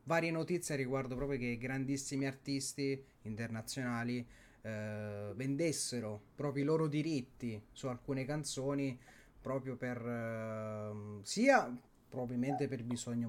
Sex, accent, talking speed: male, native, 110 wpm